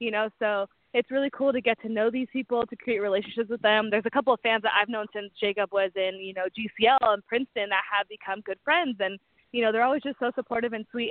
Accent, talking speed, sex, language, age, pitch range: American, 265 wpm, female, English, 20-39, 195-230 Hz